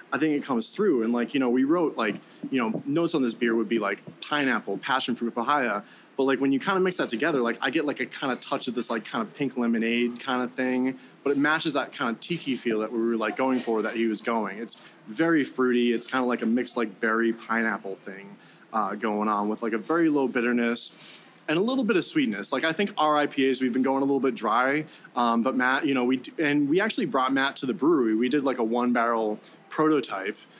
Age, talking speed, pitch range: 20-39, 255 wpm, 120-155 Hz